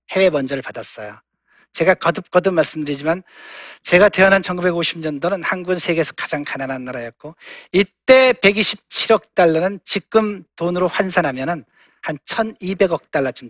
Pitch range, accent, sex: 145-200 Hz, native, male